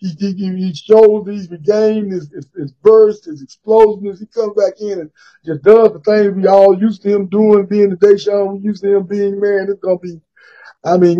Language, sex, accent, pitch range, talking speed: English, male, American, 175-210 Hz, 225 wpm